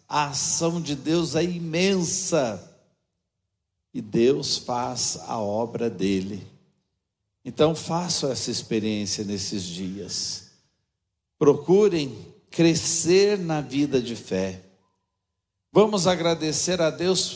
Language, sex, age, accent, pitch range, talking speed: Portuguese, male, 60-79, Brazilian, 120-160 Hz, 95 wpm